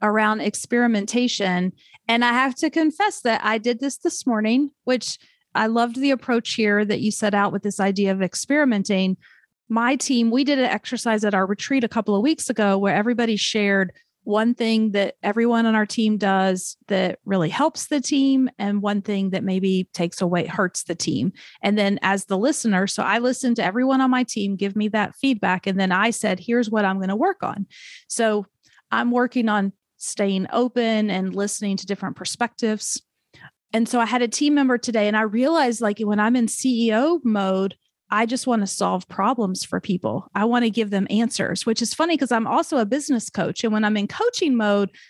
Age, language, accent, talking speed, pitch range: 30-49, English, American, 205 wpm, 200-245 Hz